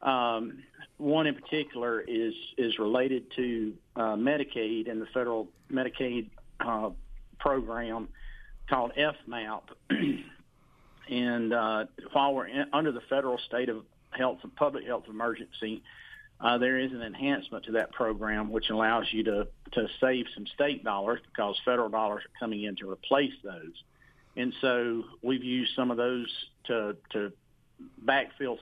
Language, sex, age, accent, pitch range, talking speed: English, male, 50-69, American, 110-130 Hz, 145 wpm